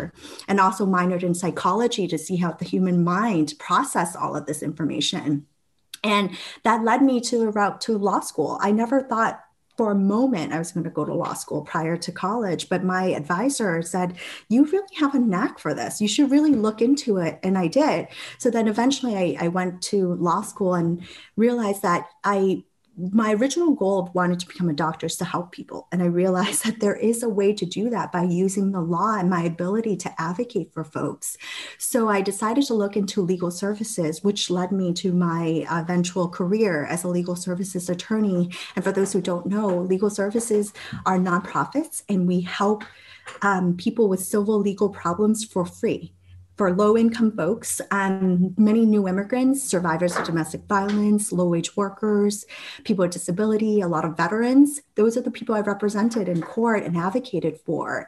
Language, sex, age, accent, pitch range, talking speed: English, female, 30-49, American, 175-220 Hz, 190 wpm